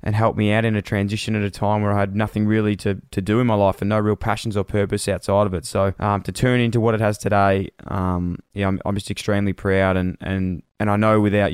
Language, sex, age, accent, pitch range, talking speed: English, male, 20-39, Australian, 95-110 Hz, 270 wpm